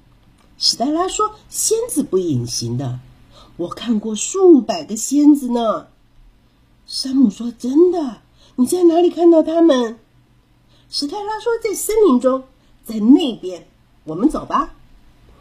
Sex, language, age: female, Chinese, 50-69